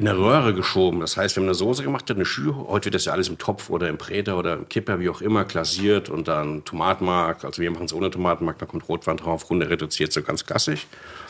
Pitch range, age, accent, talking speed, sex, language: 85-105 Hz, 60-79, German, 255 wpm, male, German